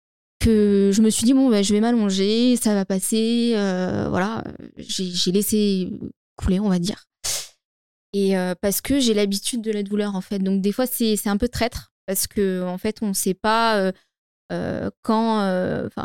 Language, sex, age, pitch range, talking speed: French, female, 20-39, 185-220 Hz, 195 wpm